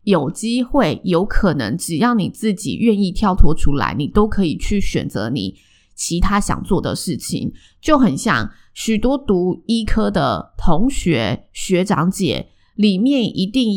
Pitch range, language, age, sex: 170-225 Hz, Chinese, 20-39, female